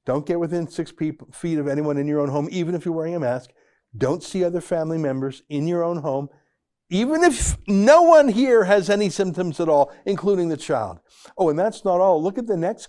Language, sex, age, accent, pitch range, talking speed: English, male, 60-79, American, 135-185 Hz, 225 wpm